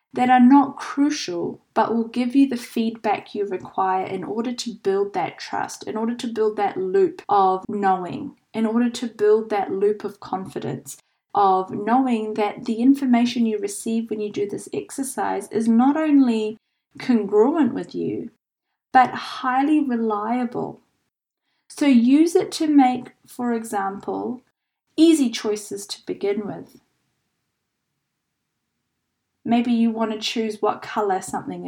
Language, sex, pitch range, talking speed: English, female, 215-265 Hz, 140 wpm